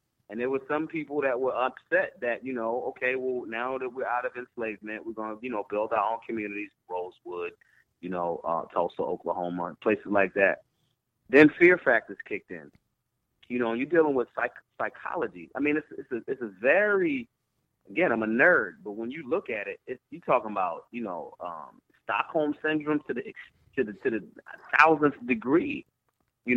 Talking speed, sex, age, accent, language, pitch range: 190 wpm, male, 30-49, American, English, 115-140 Hz